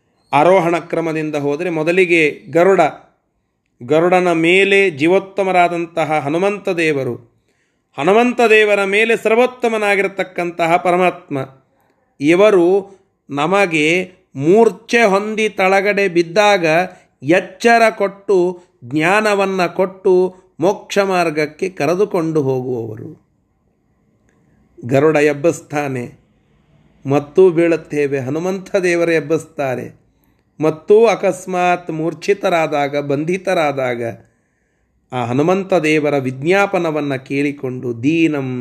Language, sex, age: Kannada, male, 30-49